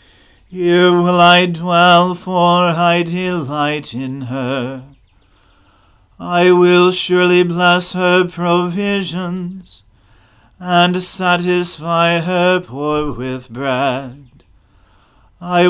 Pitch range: 145-180 Hz